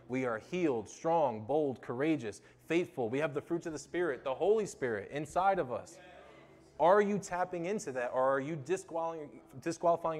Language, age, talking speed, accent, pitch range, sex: English, 20-39, 170 wpm, American, 110-155 Hz, male